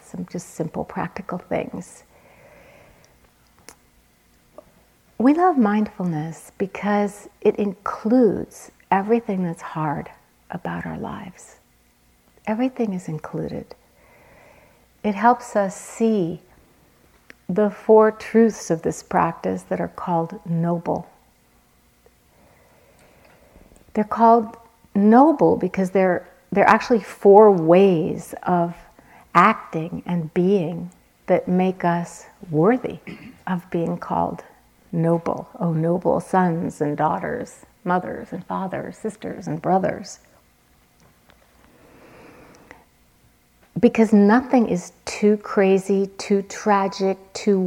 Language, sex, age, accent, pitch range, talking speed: English, female, 60-79, American, 170-210 Hz, 95 wpm